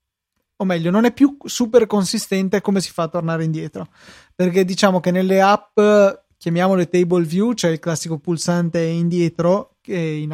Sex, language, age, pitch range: male, Italian, 20-39, 165-195 Hz